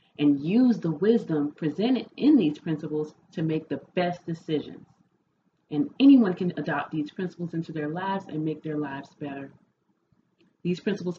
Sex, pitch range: female, 150-195 Hz